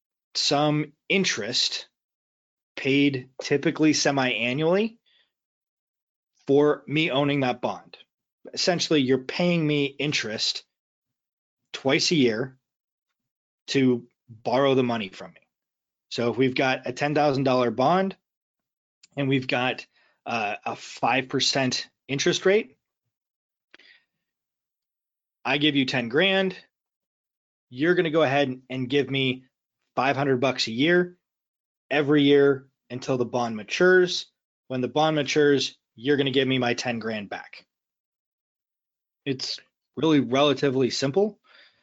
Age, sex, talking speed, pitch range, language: 20-39, male, 115 wpm, 130-155 Hz, English